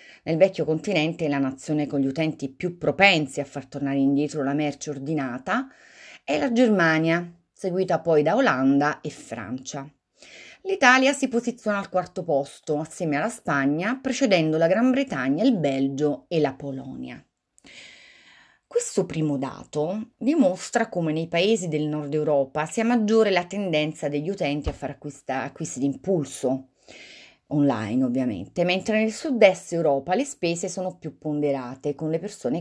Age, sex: 30-49, female